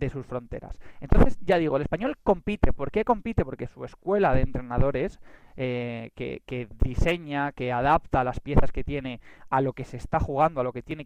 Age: 20-39